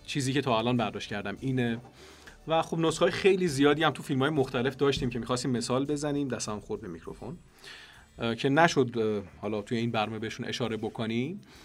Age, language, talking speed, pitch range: 40-59, Persian, 185 wpm, 105-130 Hz